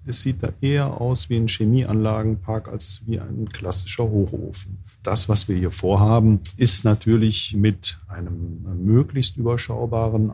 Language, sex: German, male